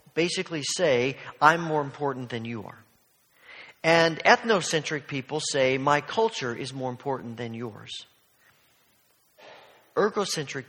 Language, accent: English, American